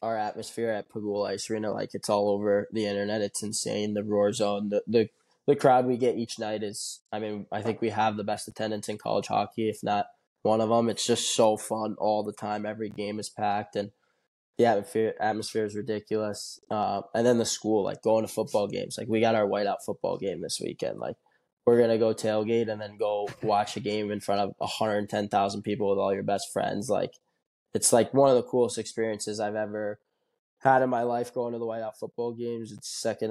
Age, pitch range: 10-29, 105-110 Hz